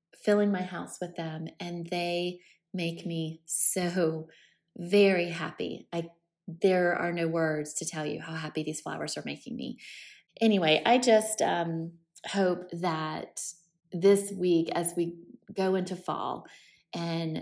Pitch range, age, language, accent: 165-185 Hz, 20-39, English, American